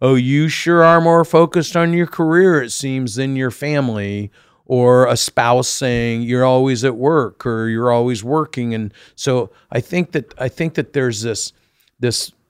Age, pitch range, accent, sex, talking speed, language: 50-69, 115-140 Hz, American, male, 180 wpm, English